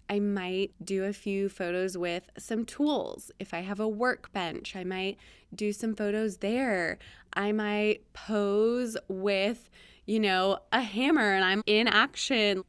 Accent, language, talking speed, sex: American, English, 150 wpm, female